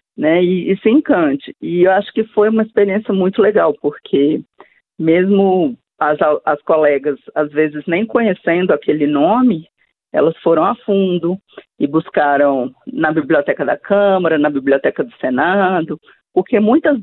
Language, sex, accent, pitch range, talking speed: Portuguese, female, Brazilian, 155-215 Hz, 145 wpm